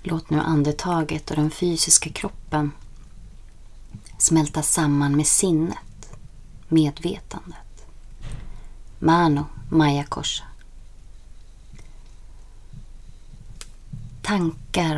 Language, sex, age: Swedish, female, 30-49